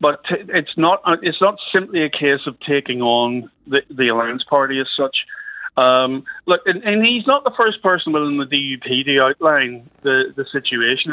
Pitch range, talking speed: 140-215 Hz, 180 wpm